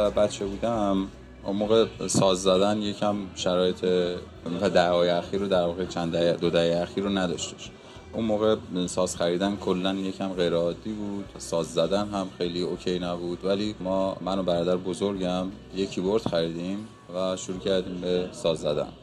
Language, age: Persian, 20-39